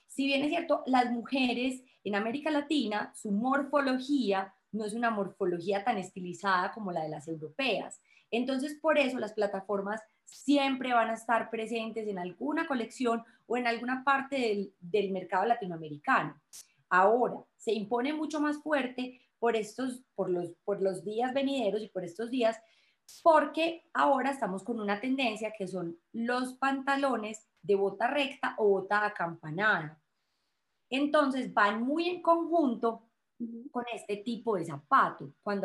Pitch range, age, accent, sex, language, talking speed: 205-275 Hz, 20-39, Colombian, female, Spanish, 150 wpm